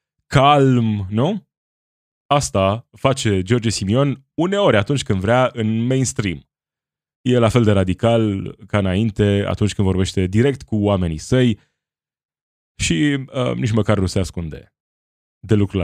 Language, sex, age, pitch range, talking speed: Romanian, male, 20-39, 90-115 Hz, 130 wpm